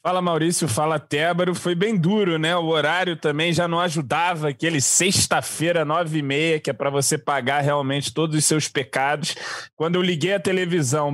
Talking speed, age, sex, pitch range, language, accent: 185 wpm, 20-39, male, 140-165 Hz, Portuguese, Brazilian